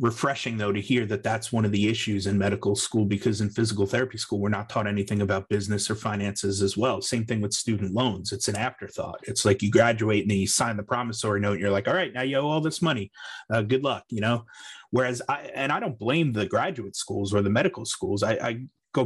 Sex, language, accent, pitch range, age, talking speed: male, English, American, 105-125 Hz, 30-49, 245 wpm